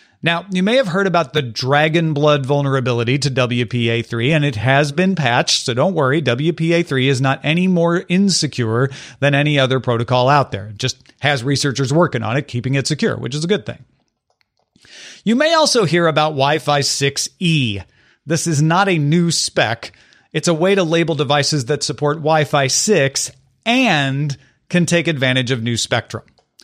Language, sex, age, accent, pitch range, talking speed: English, male, 40-59, American, 130-180 Hz, 175 wpm